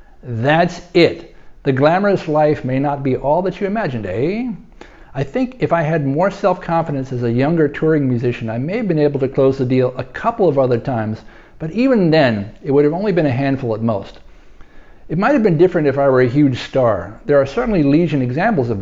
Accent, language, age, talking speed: American, English, 50-69, 215 wpm